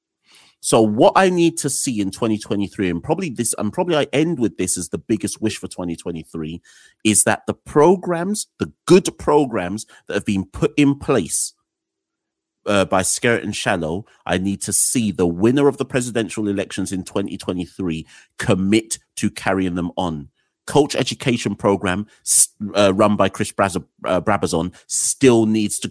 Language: English